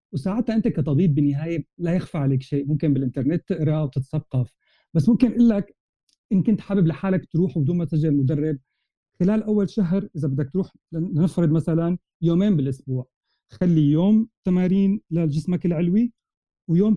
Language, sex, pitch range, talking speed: Arabic, male, 150-195 Hz, 145 wpm